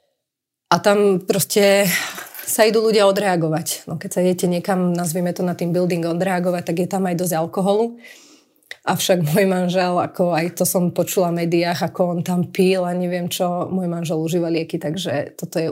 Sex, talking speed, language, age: female, 185 wpm, Slovak, 30-49